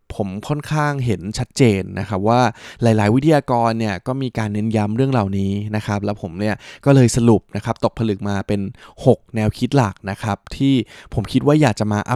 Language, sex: Thai, male